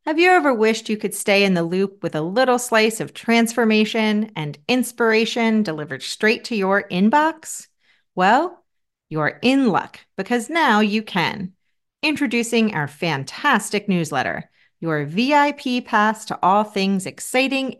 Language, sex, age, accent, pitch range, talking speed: English, female, 40-59, American, 175-255 Hz, 140 wpm